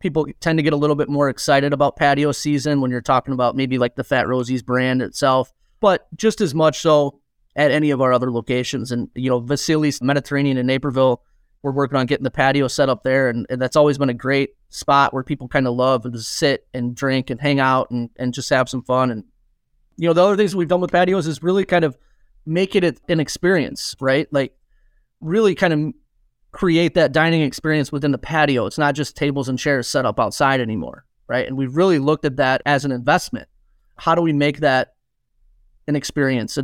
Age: 30-49